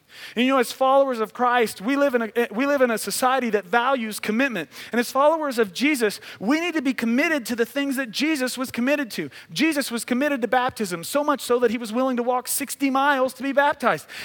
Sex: male